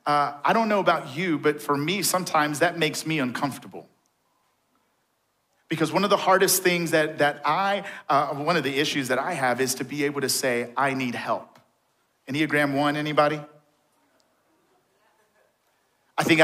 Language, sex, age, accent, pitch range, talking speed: English, male, 40-59, American, 145-175 Hz, 165 wpm